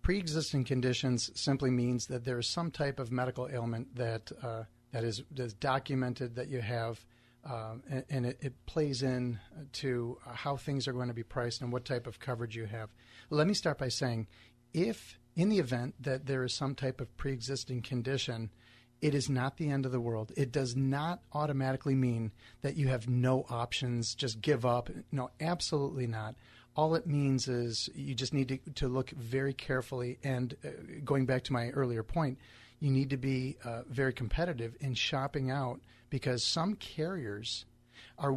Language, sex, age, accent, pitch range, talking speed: English, male, 40-59, American, 120-140 Hz, 185 wpm